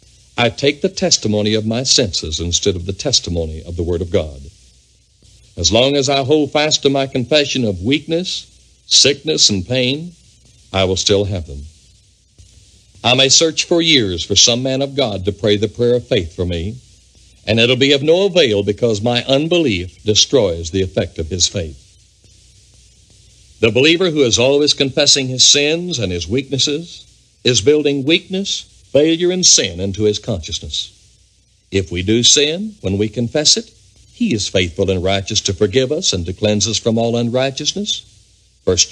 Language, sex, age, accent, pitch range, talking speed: English, male, 60-79, American, 95-135 Hz, 175 wpm